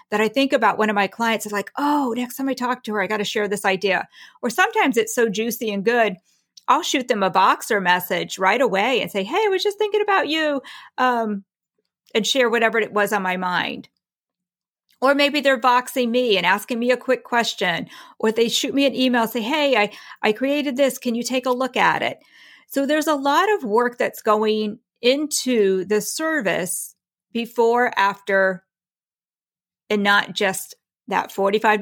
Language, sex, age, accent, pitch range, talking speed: English, female, 40-59, American, 200-260 Hz, 195 wpm